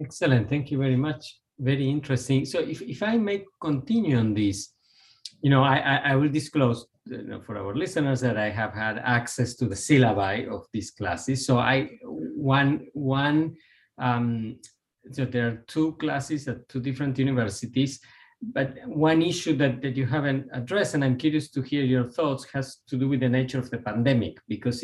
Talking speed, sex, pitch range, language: 185 wpm, male, 120-140 Hz, English